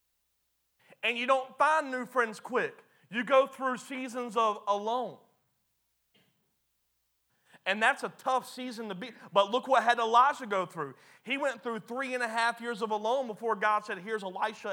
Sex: male